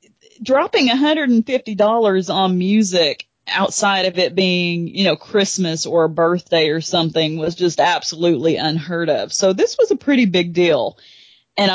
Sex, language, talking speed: female, English, 150 wpm